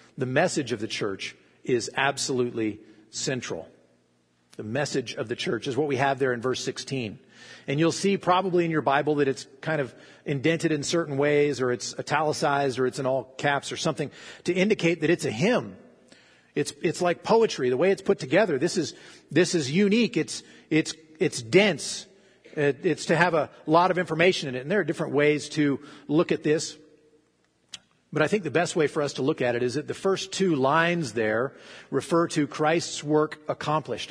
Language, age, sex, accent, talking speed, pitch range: English, 50-69, male, American, 200 wpm, 135-170 Hz